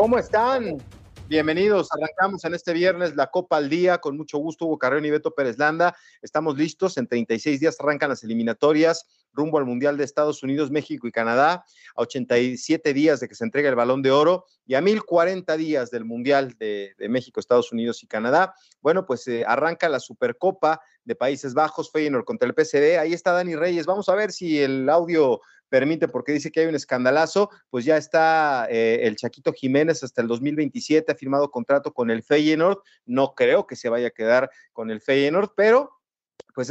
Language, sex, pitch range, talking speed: Spanish, male, 125-165 Hz, 195 wpm